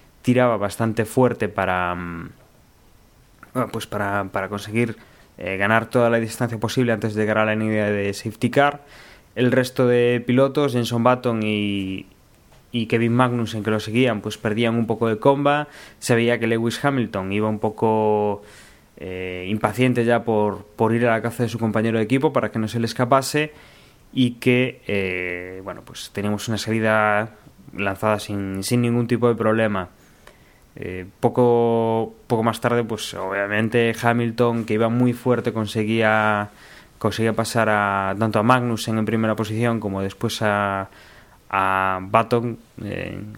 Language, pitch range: Spanish, 105-120 Hz